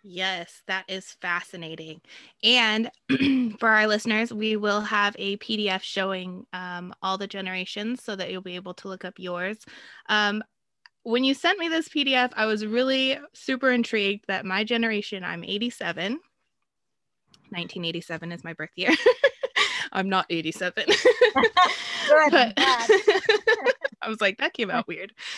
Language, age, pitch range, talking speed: English, 20-39, 190-255 Hz, 140 wpm